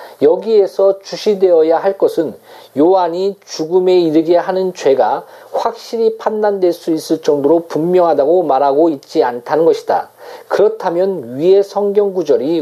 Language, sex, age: Korean, male, 40-59